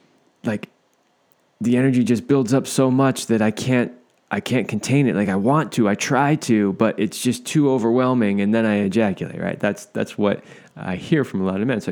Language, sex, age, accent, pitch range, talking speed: English, male, 20-39, American, 100-125 Hz, 215 wpm